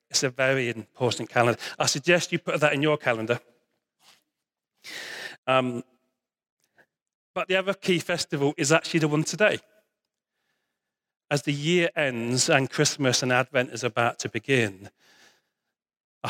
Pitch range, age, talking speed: 120-165 Hz, 40-59, 135 wpm